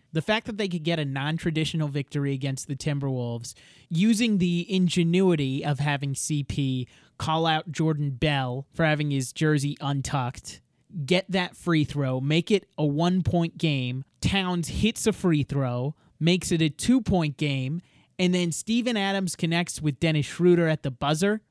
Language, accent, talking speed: English, American, 160 wpm